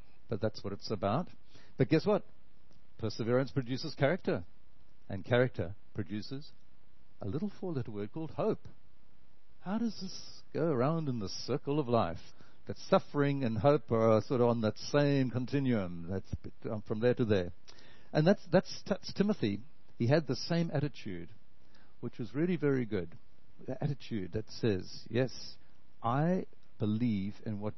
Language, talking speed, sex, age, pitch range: English, 150 wpm, male, 60-79, 105-145 Hz